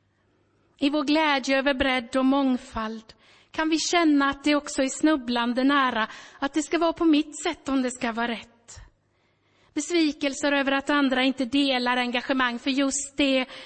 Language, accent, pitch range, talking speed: Swedish, native, 220-290 Hz, 165 wpm